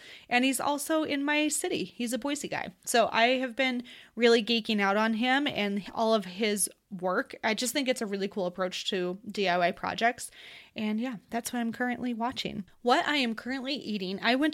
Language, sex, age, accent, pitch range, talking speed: English, female, 20-39, American, 205-250 Hz, 200 wpm